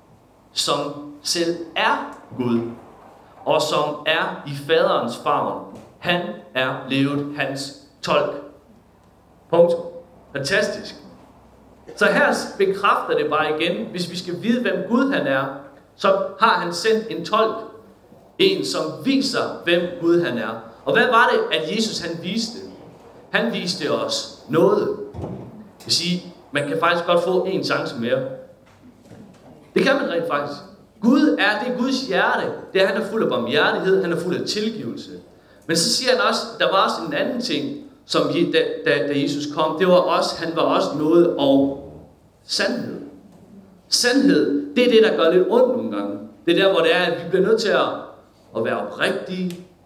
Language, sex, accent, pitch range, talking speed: Danish, male, native, 165-230 Hz, 170 wpm